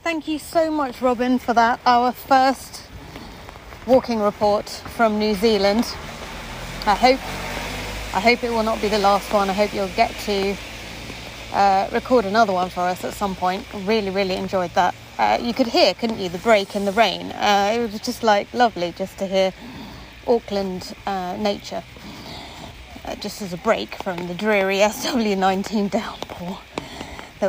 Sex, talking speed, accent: female, 170 wpm, British